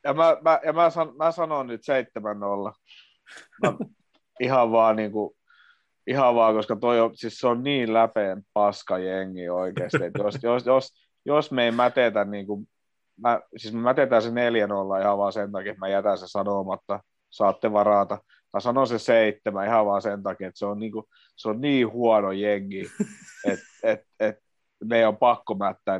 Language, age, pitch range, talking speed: Finnish, 30-49, 100-125 Hz, 180 wpm